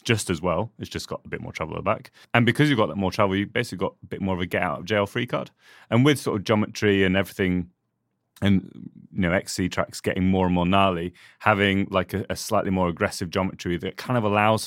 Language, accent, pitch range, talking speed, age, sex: English, British, 85-105 Hz, 260 wpm, 30-49, male